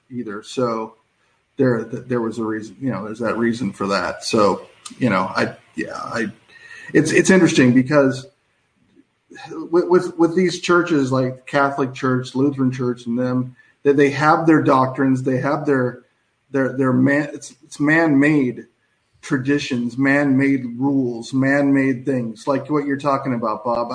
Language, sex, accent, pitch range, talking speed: English, male, American, 125-150 Hz, 155 wpm